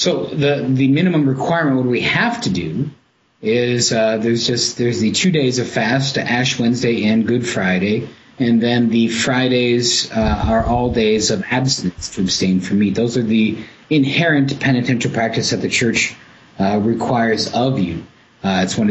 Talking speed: 175 wpm